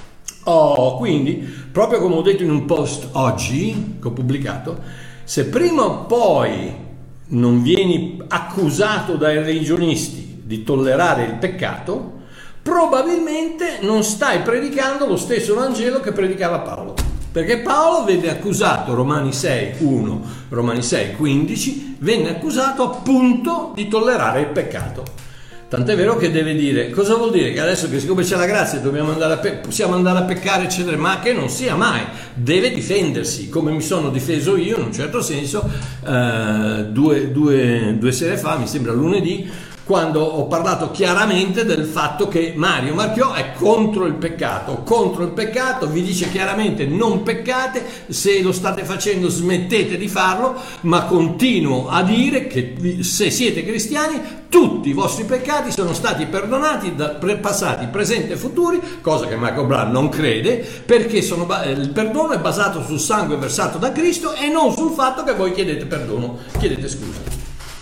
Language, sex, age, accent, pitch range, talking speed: Italian, male, 60-79, native, 150-220 Hz, 155 wpm